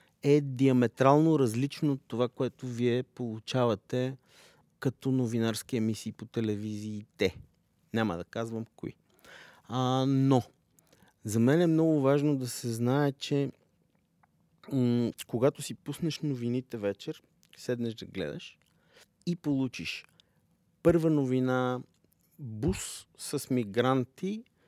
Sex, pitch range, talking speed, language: male, 115-145 Hz, 105 wpm, Bulgarian